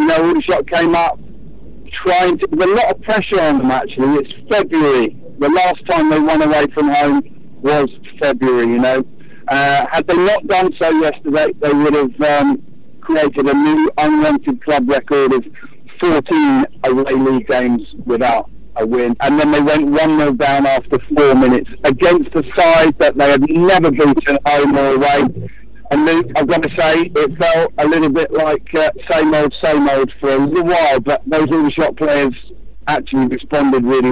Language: English